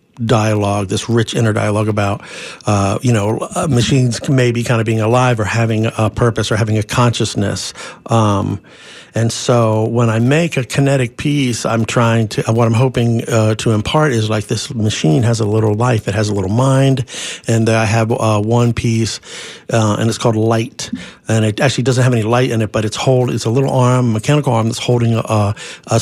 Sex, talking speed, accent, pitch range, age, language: male, 200 wpm, American, 110-125 Hz, 60-79, English